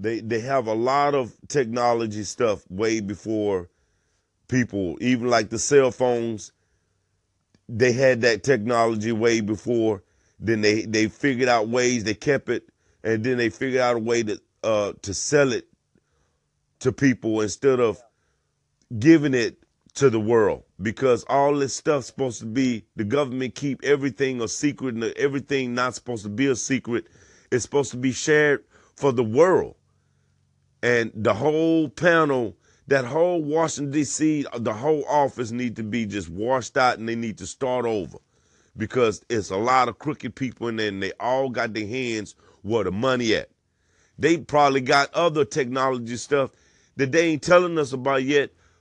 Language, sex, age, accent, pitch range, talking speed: English, male, 30-49, American, 110-140 Hz, 165 wpm